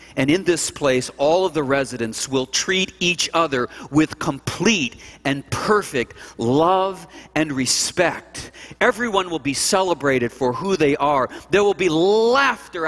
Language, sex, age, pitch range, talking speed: English, male, 50-69, 125-175 Hz, 145 wpm